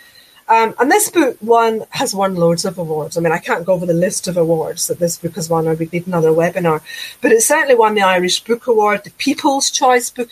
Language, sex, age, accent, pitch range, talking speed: English, female, 40-59, British, 180-240 Hz, 240 wpm